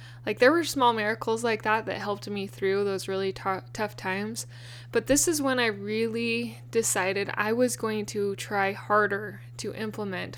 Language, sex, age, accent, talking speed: English, female, 20-39, American, 175 wpm